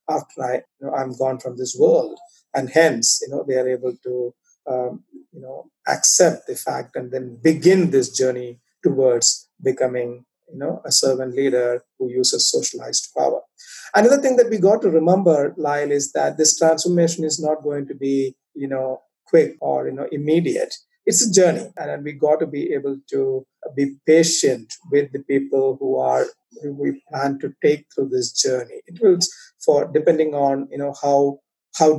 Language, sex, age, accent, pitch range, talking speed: English, male, 50-69, Indian, 135-185 Hz, 180 wpm